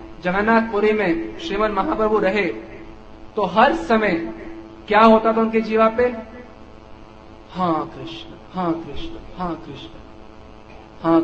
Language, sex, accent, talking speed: Hindi, male, native, 110 wpm